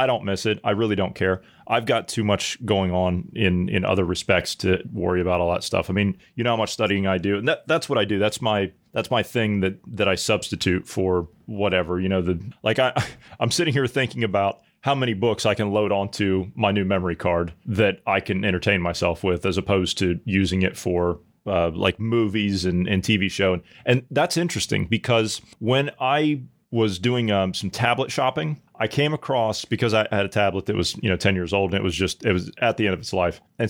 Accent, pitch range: American, 95-115 Hz